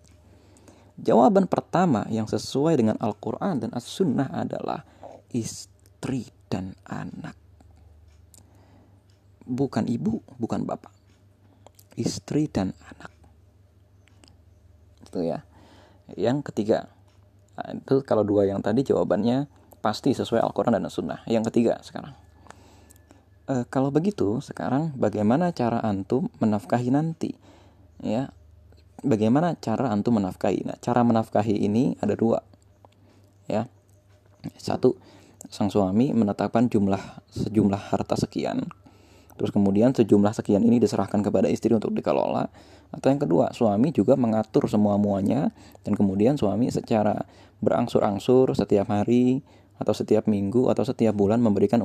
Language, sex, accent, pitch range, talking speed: Indonesian, male, native, 95-115 Hz, 115 wpm